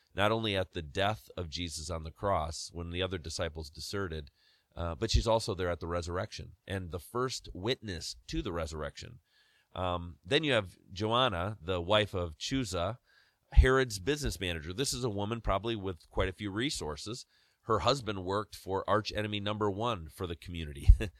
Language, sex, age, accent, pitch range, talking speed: English, male, 30-49, American, 85-110 Hz, 175 wpm